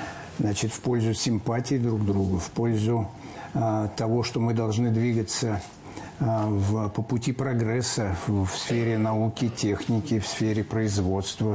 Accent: native